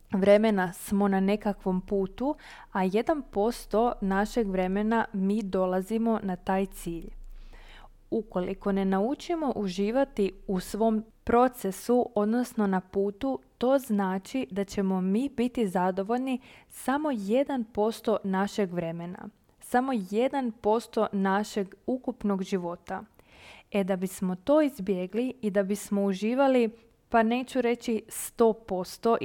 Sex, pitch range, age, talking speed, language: female, 195-230 Hz, 20-39, 110 wpm, Croatian